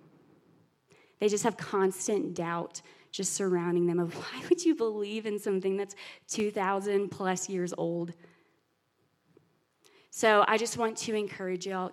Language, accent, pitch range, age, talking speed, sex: English, American, 180-225 Hz, 20-39, 140 wpm, female